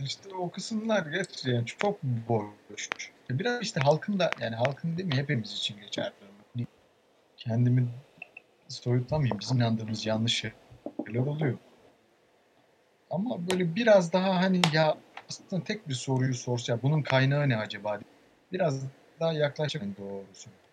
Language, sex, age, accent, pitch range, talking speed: Turkish, male, 60-79, native, 120-175 Hz, 125 wpm